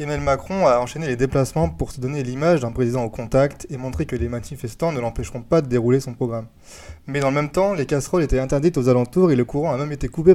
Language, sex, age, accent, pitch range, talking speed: French, male, 20-39, French, 125-150 Hz, 255 wpm